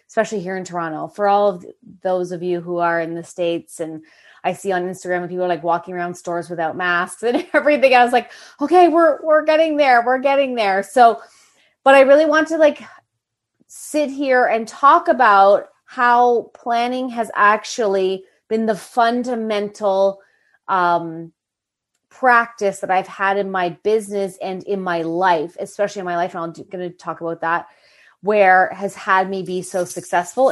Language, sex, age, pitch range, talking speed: English, female, 30-49, 180-245 Hz, 180 wpm